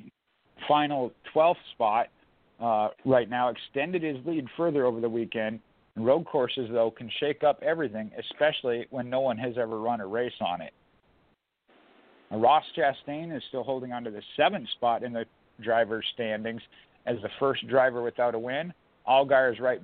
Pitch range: 120-150 Hz